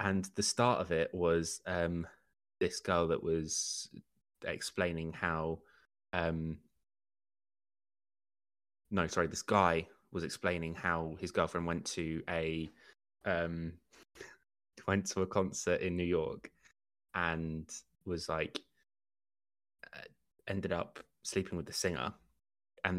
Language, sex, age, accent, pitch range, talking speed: English, male, 20-39, British, 85-100 Hz, 115 wpm